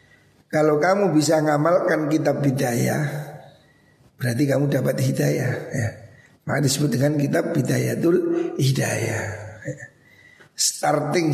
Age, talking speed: 60-79, 105 wpm